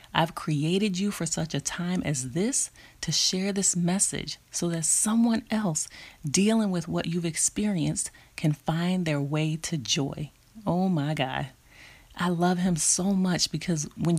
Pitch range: 150-200 Hz